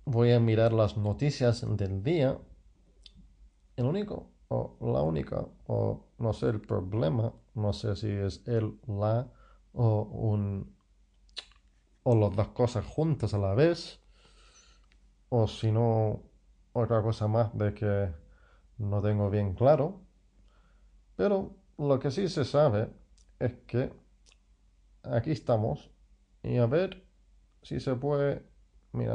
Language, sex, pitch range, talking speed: English, male, 100-130 Hz, 130 wpm